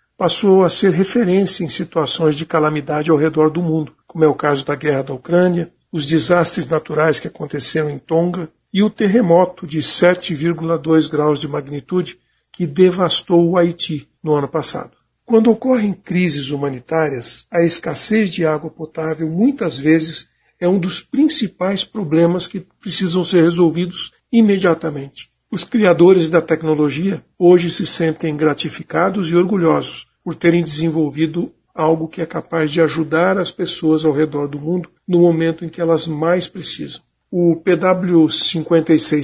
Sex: male